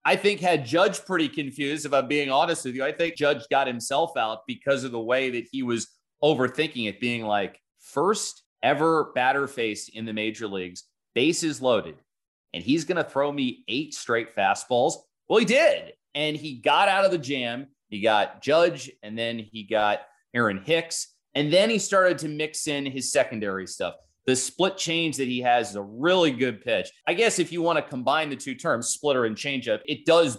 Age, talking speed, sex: 30-49, 205 wpm, male